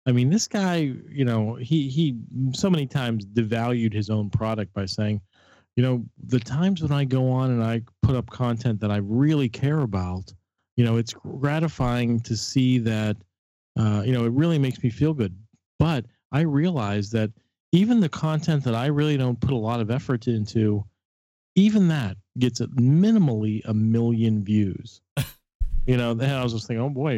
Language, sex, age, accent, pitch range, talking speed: English, male, 40-59, American, 110-140 Hz, 185 wpm